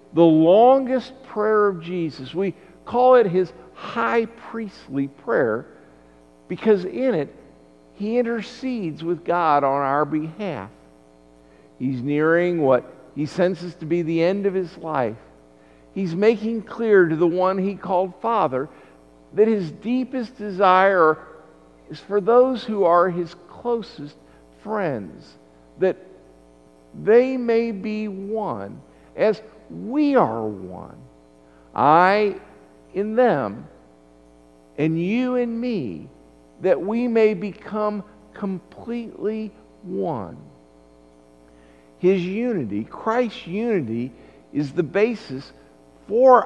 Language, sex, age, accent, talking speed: English, male, 50-69, American, 110 wpm